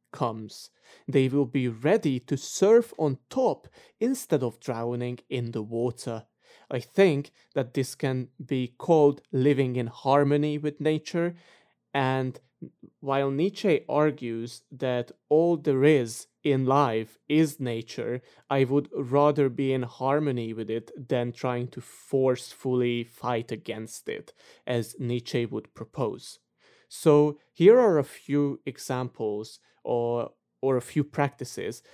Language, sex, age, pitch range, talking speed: English, male, 20-39, 120-150 Hz, 130 wpm